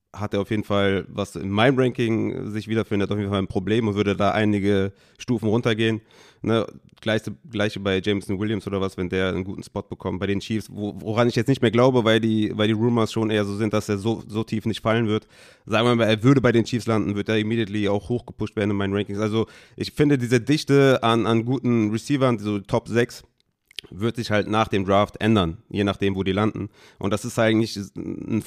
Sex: male